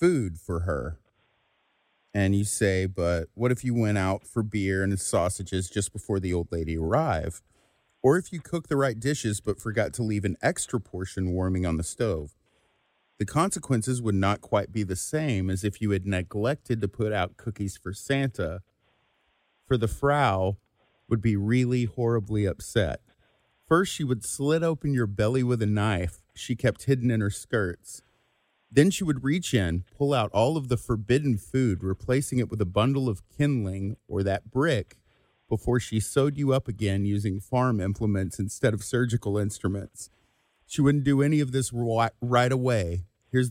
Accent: American